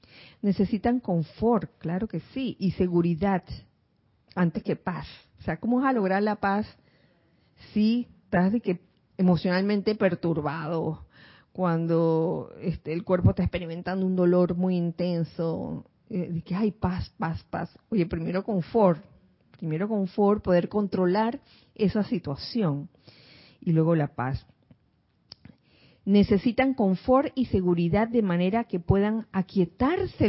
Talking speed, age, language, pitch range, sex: 130 wpm, 40-59, Spanish, 170-220 Hz, female